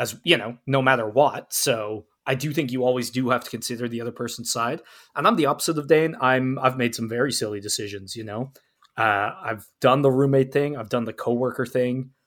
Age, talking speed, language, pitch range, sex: 20-39, 225 wpm, English, 120-150 Hz, male